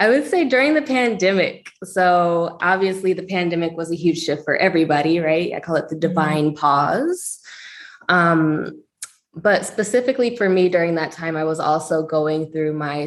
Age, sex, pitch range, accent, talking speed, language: 20-39, female, 160-200 Hz, American, 170 wpm, English